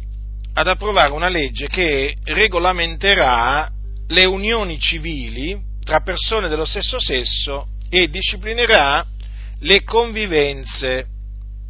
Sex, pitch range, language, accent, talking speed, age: male, 100-155 Hz, Italian, native, 90 wpm, 40-59